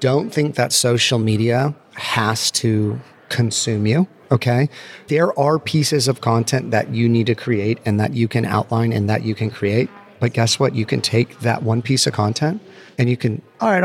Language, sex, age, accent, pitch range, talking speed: English, male, 30-49, American, 115-145 Hz, 200 wpm